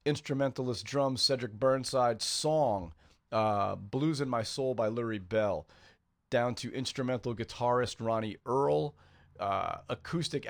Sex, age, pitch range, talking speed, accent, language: male, 40-59, 105-130 Hz, 120 wpm, American, English